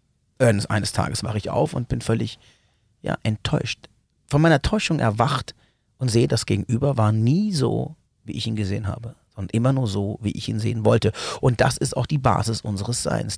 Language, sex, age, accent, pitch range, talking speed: German, male, 40-59, German, 105-125 Hz, 190 wpm